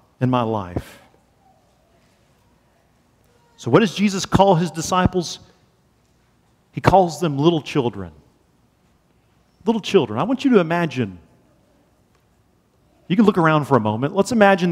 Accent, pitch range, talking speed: American, 135-190 Hz, 125 wpm